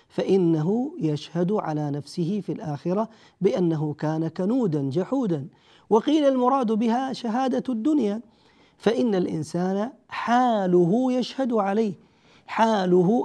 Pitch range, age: 170-235 Hz, 40-59